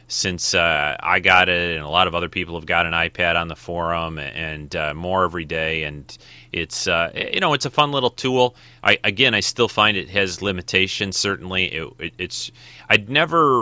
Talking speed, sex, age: 205 wpm, male, 30-49